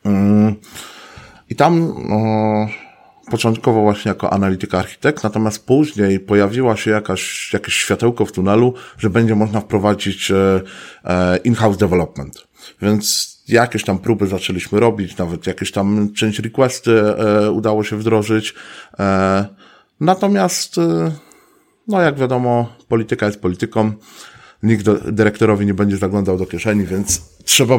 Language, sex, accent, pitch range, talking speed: Polish, male, native, 95-115 Hz, 115 wpm